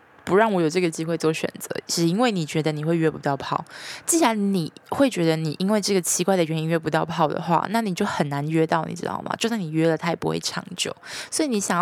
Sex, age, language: female, 20-39, Chinese